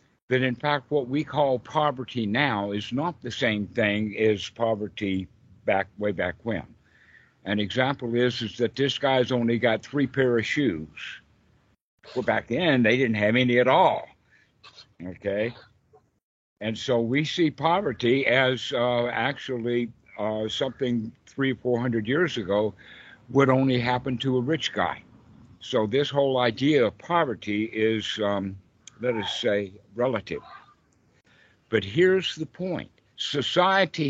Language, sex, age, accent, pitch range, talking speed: English, male, 60-79, American, 110-135 Hz, 145 wpm